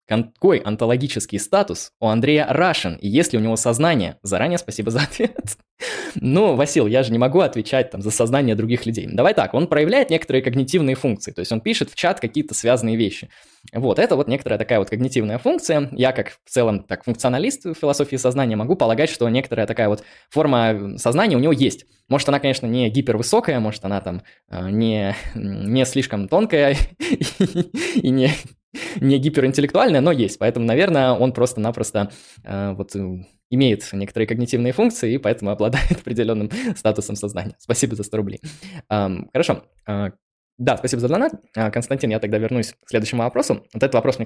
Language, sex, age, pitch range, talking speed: Russian, male, 20-39, 105-130 Hz, 175 wpm